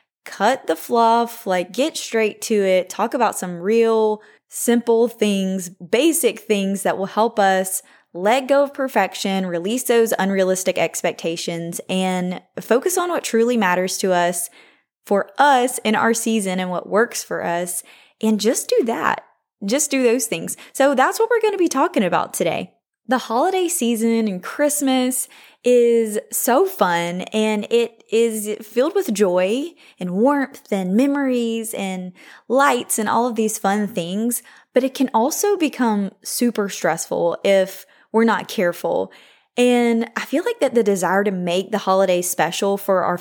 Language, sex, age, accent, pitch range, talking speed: English, female, 10-29, American, 190-240 Hz, 160 wpm